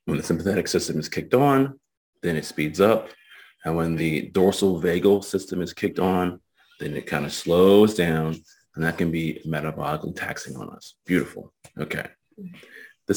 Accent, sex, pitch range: American, male, 80-110 Hz